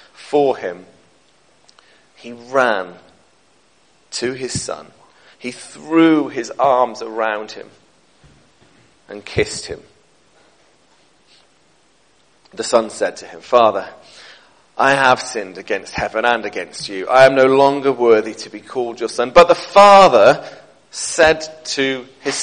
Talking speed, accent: 125 wpm, British